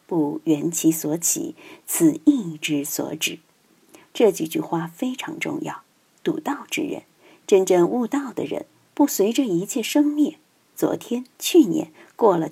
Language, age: Chinese, 50-69